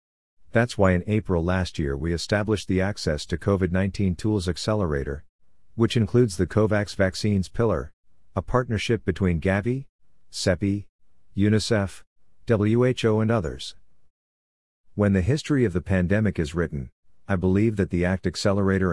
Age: 50-69